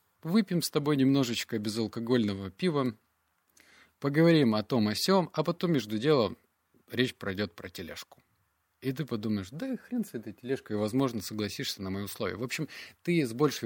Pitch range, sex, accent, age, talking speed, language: 110-150 Hz, male, native, 30-49, 165 wpm, Russian